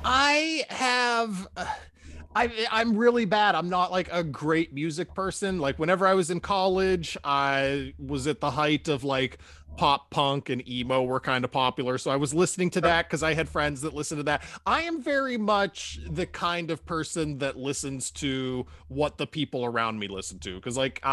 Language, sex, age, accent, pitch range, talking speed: English, male, 30-49, American, 135-180 Hz, 195 wpm